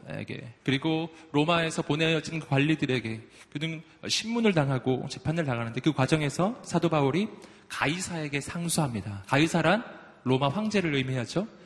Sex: male